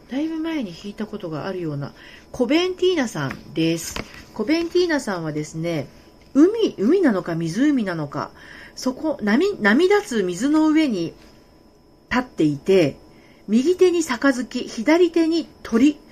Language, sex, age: Japanese, female, 40-59